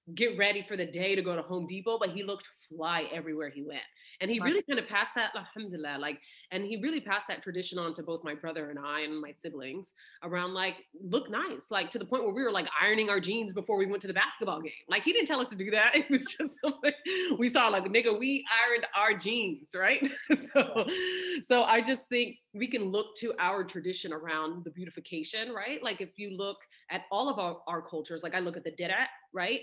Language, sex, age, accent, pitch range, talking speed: English, female, 30-49, American, 175-245 Hz, 235 wpm